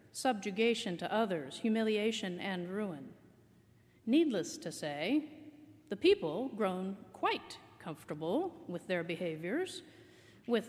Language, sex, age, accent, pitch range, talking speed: English, female, 40-59, American, 175-250 Hz, 100 wpm